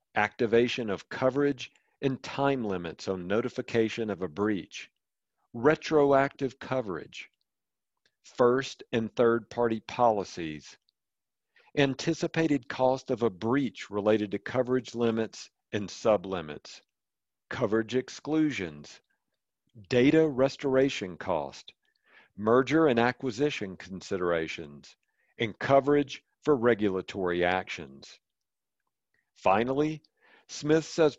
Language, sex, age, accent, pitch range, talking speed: English, male, 50-69, American, 110-140 Hz, 90 wpm